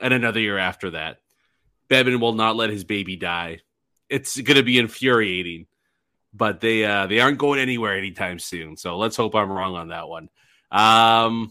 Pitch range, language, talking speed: 110-145 Hz, English, 175 wpm